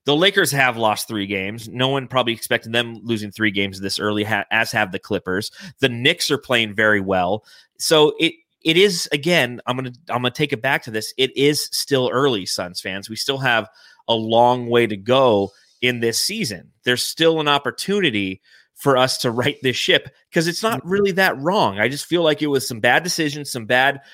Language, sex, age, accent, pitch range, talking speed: English, male, 30-49, American, 115-150 Hz, 215 wpm